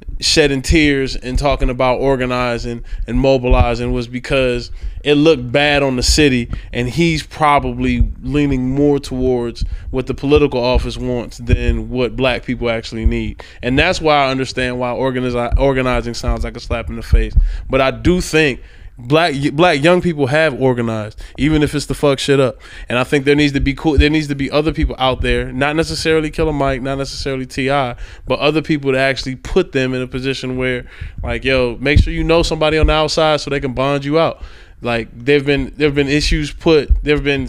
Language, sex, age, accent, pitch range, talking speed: English, male, 20-39, American, 120-145 Hz, 200 wpm